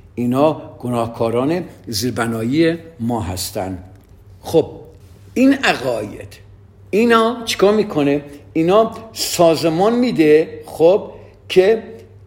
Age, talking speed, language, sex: 50-69, 85 wpm, Persian, male